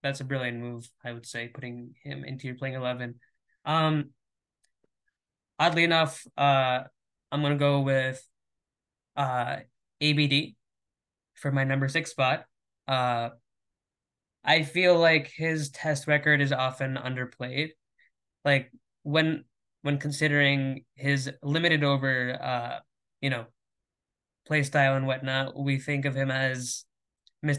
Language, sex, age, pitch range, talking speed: English, male, 10-29, 130-150 Hz, 130 wpm